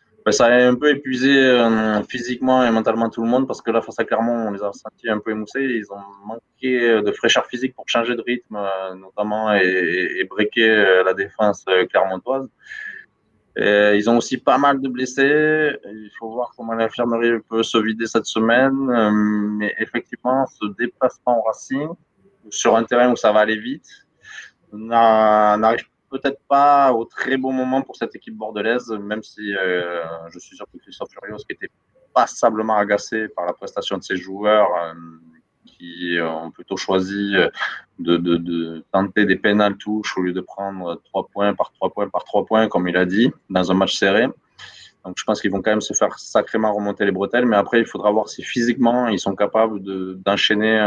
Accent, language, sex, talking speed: French, French, male, 190 wpm